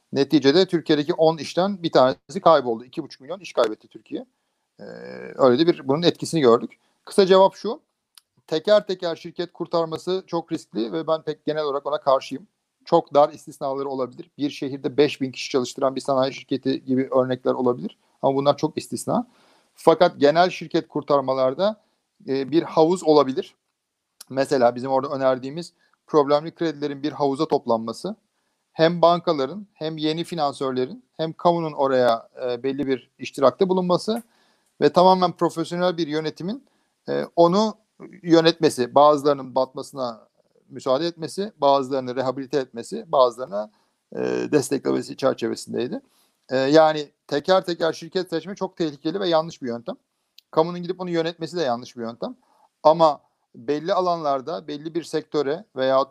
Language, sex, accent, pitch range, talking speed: Turkish, male, native, 135-170 Hz, 140 wpm